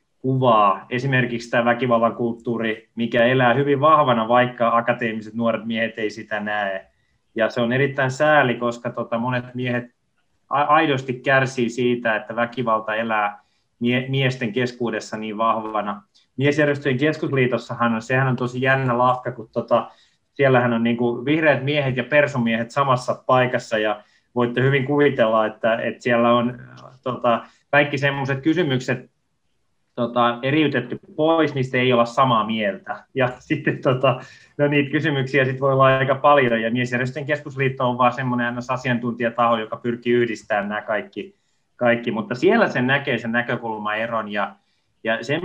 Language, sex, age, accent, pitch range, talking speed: Finnish, male, 20-39, native, 115-135 Hz, 140 wpm